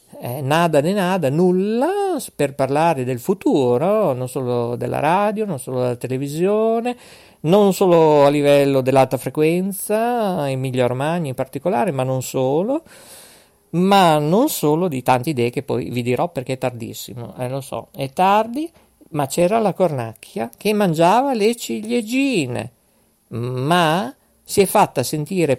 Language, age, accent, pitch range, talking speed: Italian, 50-69, native, 135-215 Hz, 145 wpm